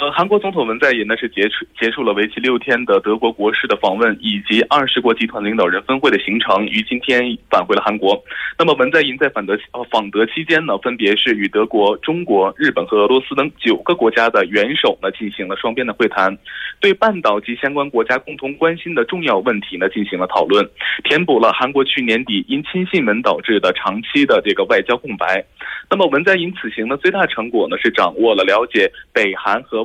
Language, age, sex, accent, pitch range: Korean, 20-39, male, Chinese, 115-185 Hz